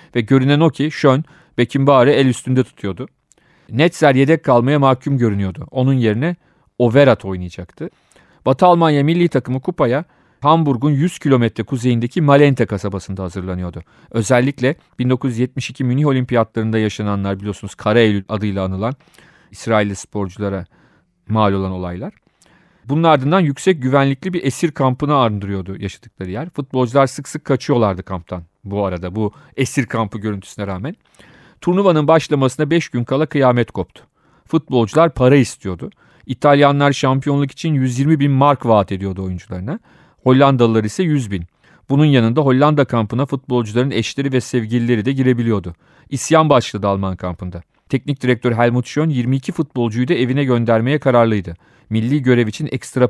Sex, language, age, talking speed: male, Turkish, 40-59, 135 wpm